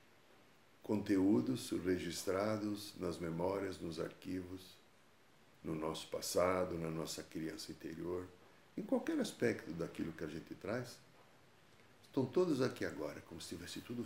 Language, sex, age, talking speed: Portuguese, male, 60-79, 125 wpm